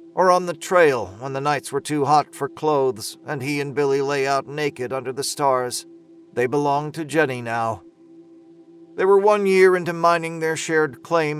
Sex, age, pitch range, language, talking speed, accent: male, 40-59, 130-165 Hz, English, 190 wpm, American